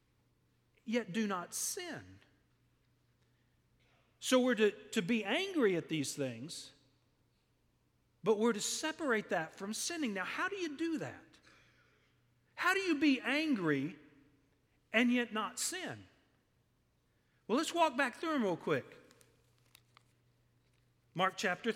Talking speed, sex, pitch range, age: 125 wpm, male, 130-215 Hz, 40-59